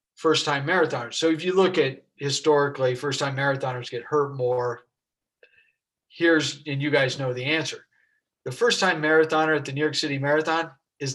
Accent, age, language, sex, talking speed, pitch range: American, 50-69, English, male, 180 wpm, 125-155 Hz